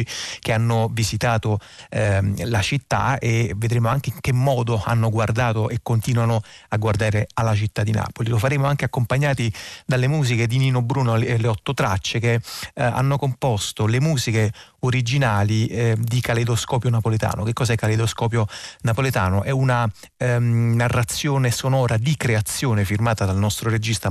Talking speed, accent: 150 wpm, native